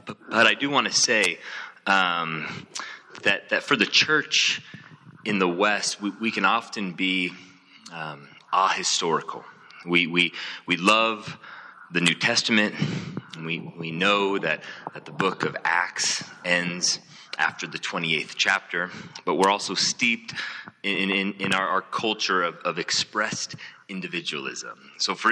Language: English